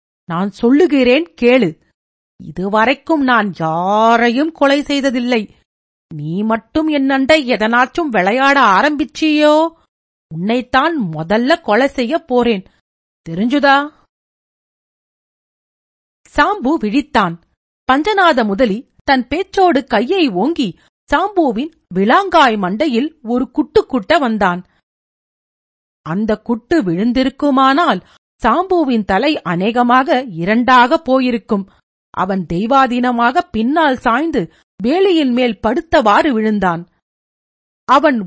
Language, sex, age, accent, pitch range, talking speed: Tamil, female, 50-69, native, 215-300 Hz, 80 wpm